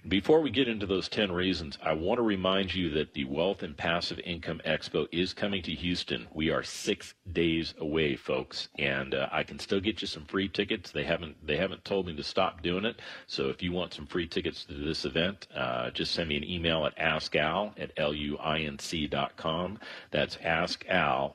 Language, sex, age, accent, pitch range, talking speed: English, male, 40-59, American, 75-90 Hz, 205 wpm